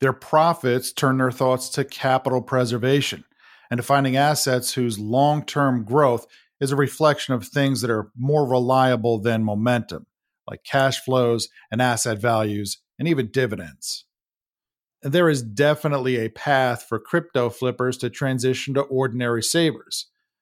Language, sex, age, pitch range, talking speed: English, male, 40-59, 120-145 Hz, 140 wpm